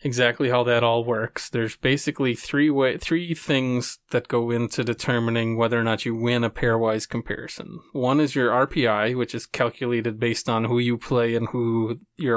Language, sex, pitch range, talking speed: English, male, 115-135 Hz, 185 wpm